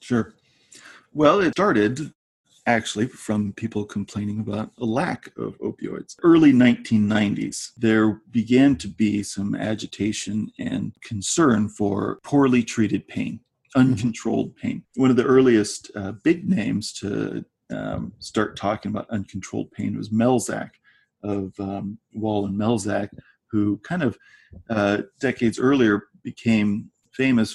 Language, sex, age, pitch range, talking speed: English, male, 40-59, 105-120 Hz, 125 wpm